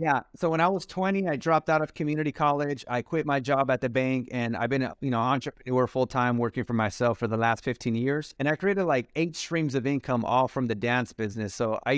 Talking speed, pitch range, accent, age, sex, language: 250 wpm, 120-140 Hz, American, 30-49, male, English